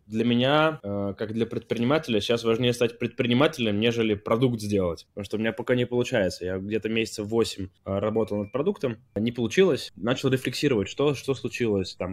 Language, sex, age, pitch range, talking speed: Russian, male, 20-39, 105-130 Hz, 170 wpm